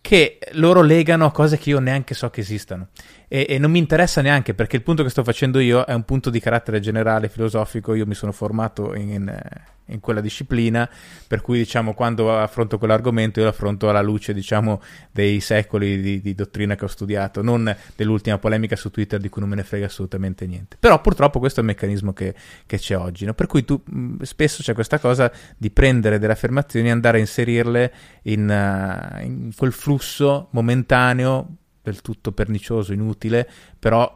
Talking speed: 195 wpm